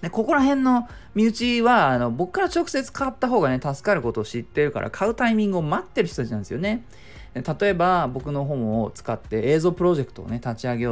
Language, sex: Japanese, male